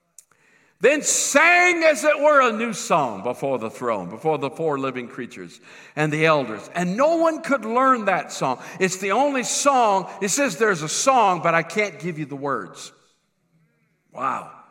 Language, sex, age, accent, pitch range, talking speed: English, male, 50-69, American, 145-215 Hz, 175 wpm